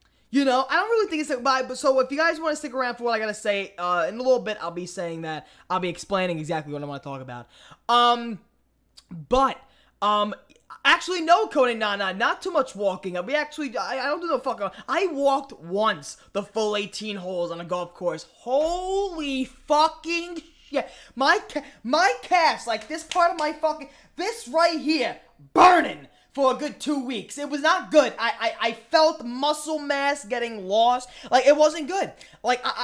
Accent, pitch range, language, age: American, 190-300 Hz, English, 20-39